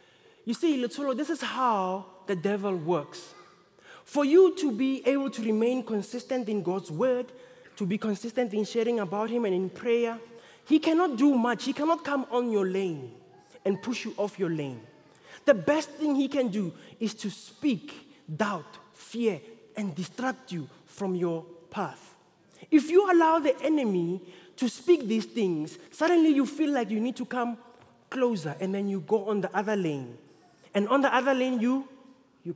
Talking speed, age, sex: 175 wpm, 20-39, male